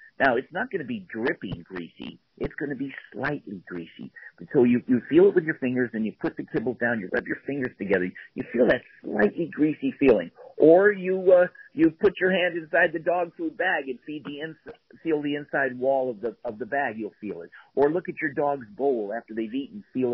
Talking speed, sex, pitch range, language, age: 225 wpm, male, 115-180 Hz, English, 50-69